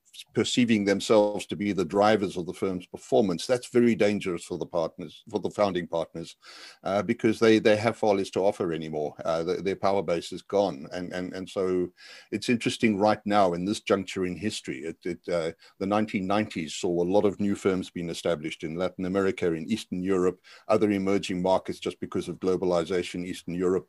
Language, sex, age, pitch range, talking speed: English, male, 60-79, 90-110 Hz, 195 wpm